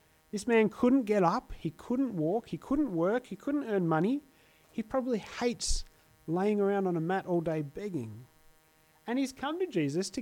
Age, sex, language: 30-49, male, English